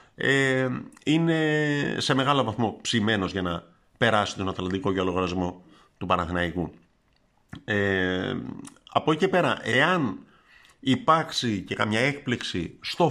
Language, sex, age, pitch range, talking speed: Greek, male, 50-69, 100-140 Hz, 110 wpm